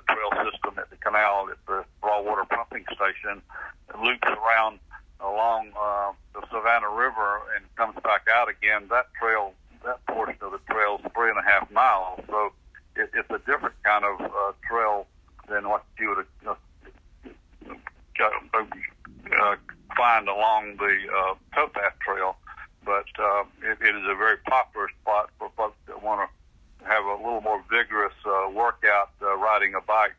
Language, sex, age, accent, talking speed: English, male, 60-79, American, 165 wpm